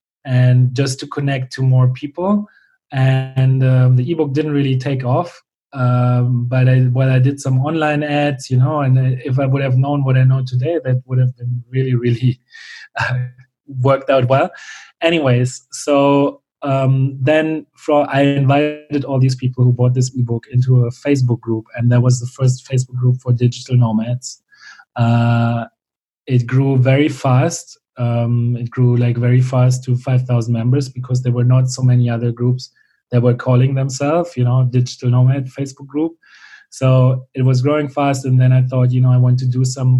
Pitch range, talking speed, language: 125-135 Hz, 180 wpm, English